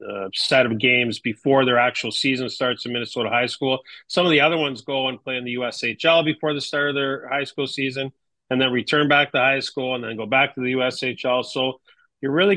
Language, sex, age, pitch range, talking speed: English, male, 40-59, 120-140 Hz, 235 wpm